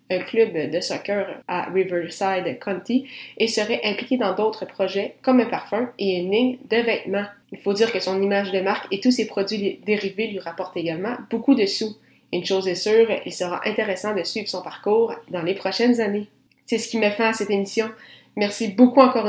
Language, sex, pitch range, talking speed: French, female, 185-225 Hz, 205 wpm